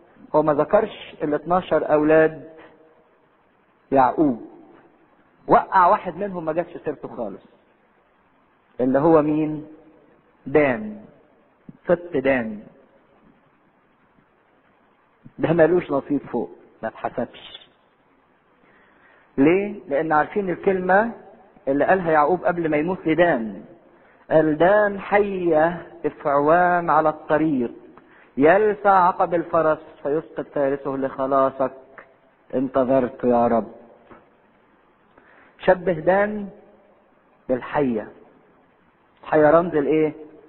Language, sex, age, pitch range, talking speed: English, male, 50-69, 150-190 Hz, 85 wpm